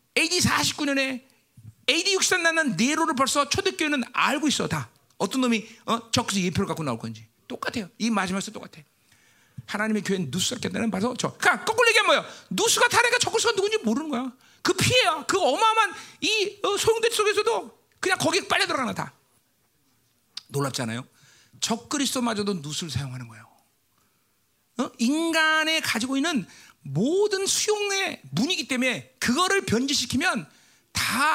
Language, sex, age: Korean, male, 40-59